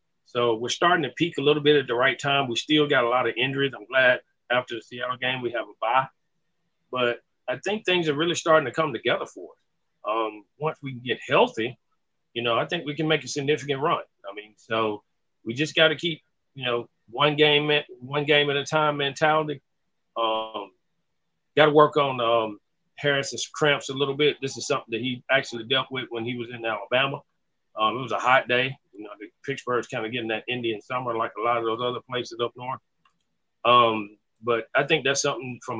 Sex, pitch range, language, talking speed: male, 115-145 Hz, English, 220 wpm